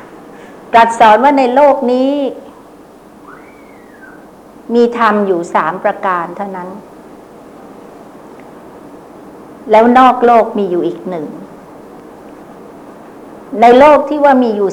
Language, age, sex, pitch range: Thai, 60-79, female, 195-235 Hz